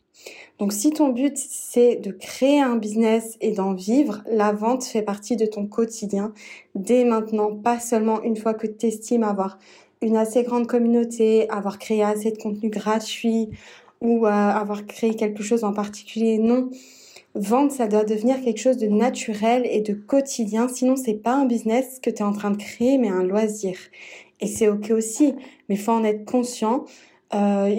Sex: female